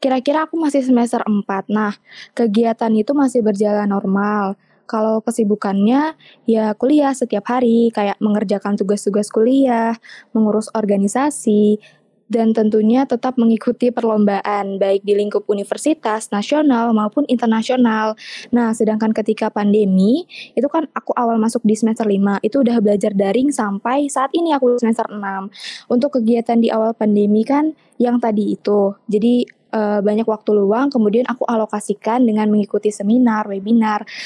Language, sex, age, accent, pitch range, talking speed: Indonesian, female, 20-39, native, 215-250 Hz, 135 wpm